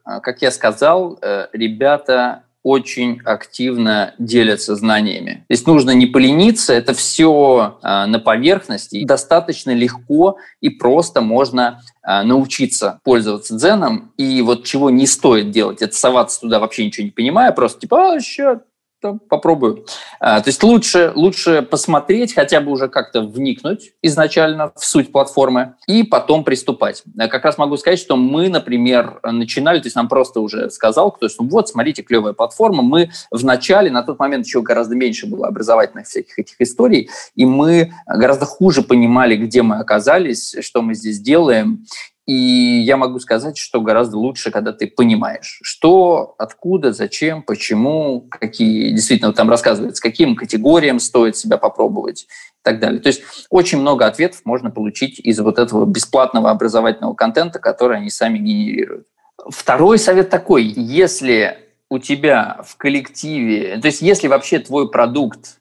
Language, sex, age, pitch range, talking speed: Russian, male, 20-39, 120-185 Hz, 150 wpm